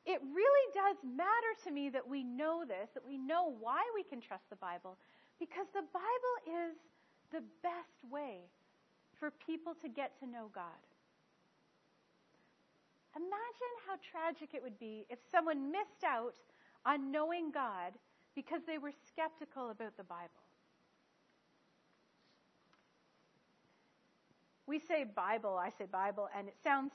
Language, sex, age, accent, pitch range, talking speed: English, female, 40-59, American, 235-335 Hz, 140 wpm